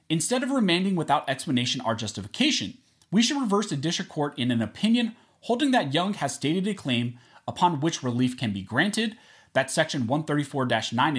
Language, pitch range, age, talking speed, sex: English, 125-205 Hz, 30-49, 170 wpm, male